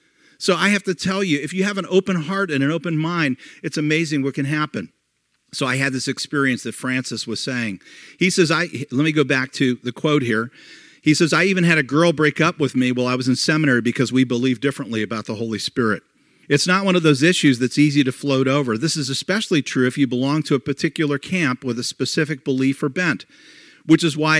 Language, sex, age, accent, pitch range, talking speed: English, male, 50-69, American, 130-160 Hz, 235 wpm